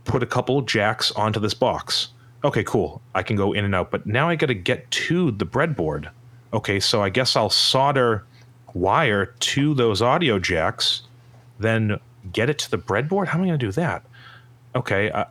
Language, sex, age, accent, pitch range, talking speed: English, male, 30-49, American, 105-130 Hz, 190 wpm